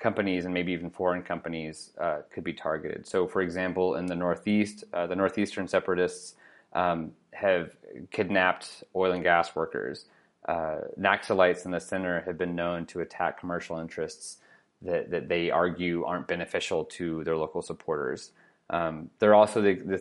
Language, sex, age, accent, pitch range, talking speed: English, male, 30-49, American, 85-100 Hz, 160 wpm